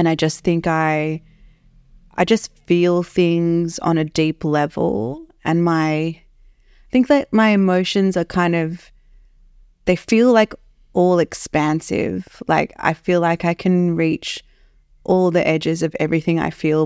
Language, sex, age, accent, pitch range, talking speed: English, female, 20-39, Australian, 155-180 Hz, 150 wpm